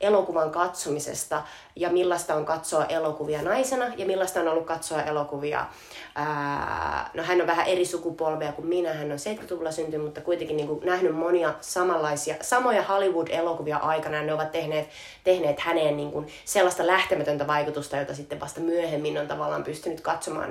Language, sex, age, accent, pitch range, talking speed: Finnish, female, 20-39, native, 150-185 Hz, 160 wpm